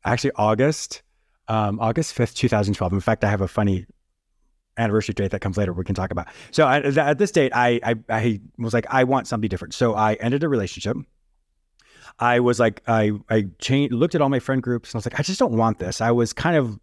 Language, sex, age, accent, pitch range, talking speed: English, male, 30-49, American, 110-140 Hz, 230 wpm